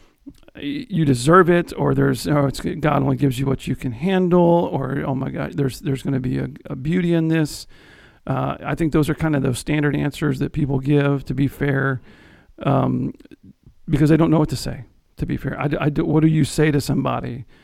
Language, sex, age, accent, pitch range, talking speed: English, male, 50-69, American, 135-160 Hz, 215 wpm